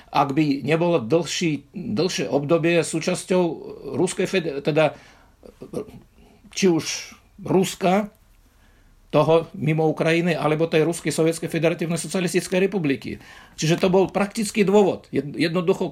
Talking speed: 110 wpm